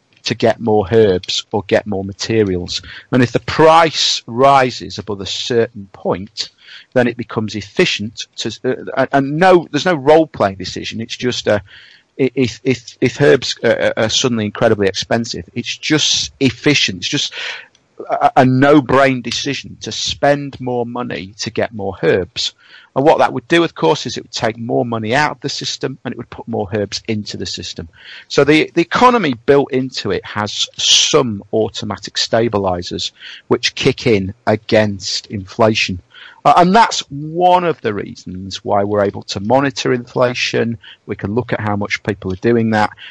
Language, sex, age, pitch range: English, male, 40-59, 100-130 Hz